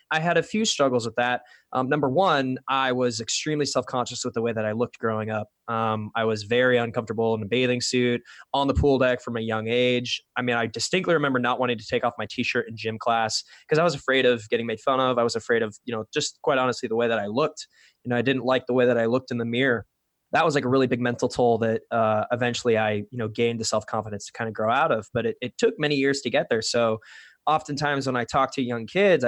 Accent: American